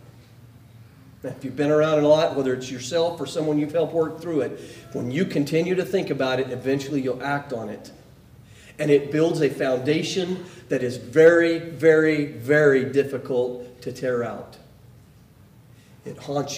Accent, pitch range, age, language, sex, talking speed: American, 130-160 Hz, 40-59, English, male, 165 wpm